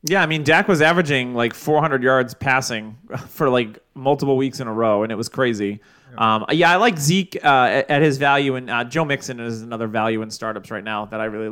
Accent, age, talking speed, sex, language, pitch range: American, 30-49, 230 wpm, male, English, 125-175 Hz